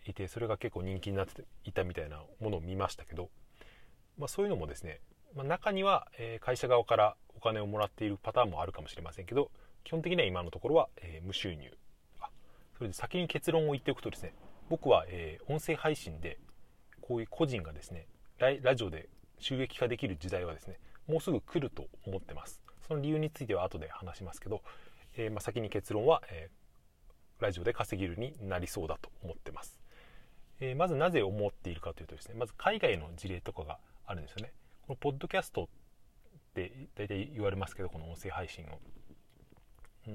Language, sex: Japanese, male